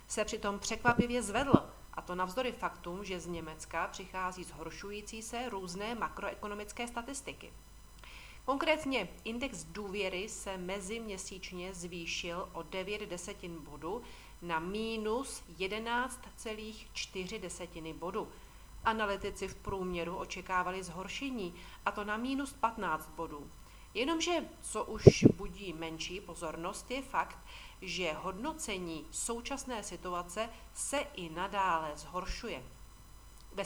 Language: Czech